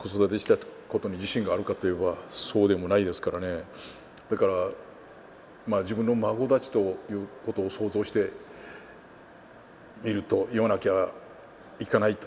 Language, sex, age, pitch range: Japanese, male, 50-69, 100-150 Hz